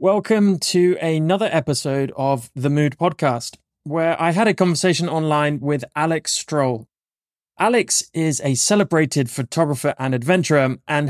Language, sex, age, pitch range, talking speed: English, male, 20-39, 140-180 Hz, 135 wpm